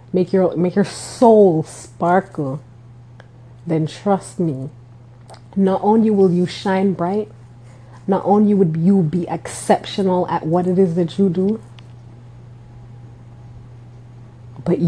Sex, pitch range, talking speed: female, 120-180 Hz, 115 wpm